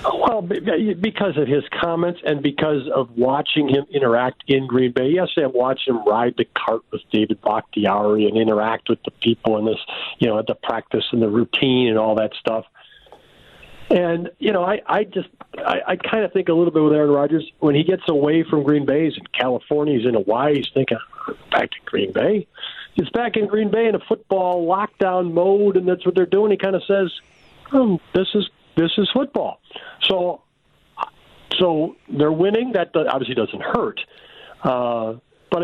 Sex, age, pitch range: male, 50-69, 135-185 Hz